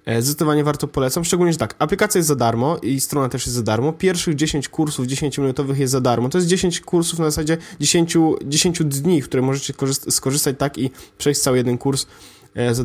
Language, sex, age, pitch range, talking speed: Polish, male, 20-39, 115-150 Hz, 200 wpm